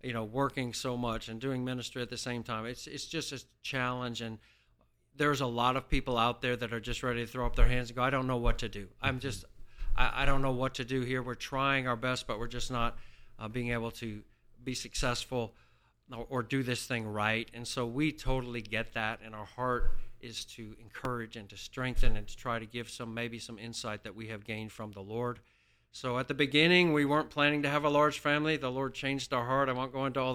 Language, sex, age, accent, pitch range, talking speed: English, male, 50-69, American, 115-135 Hz, 245 wpm